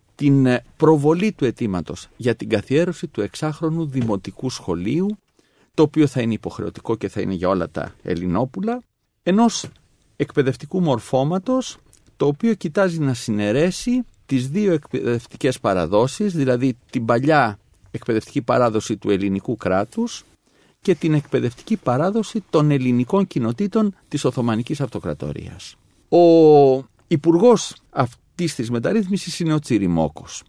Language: Greek